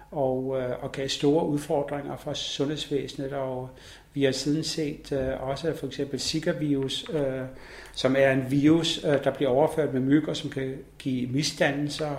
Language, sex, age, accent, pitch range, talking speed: Danish, male, 60-79, native, 130-150 Hz, 165 wpm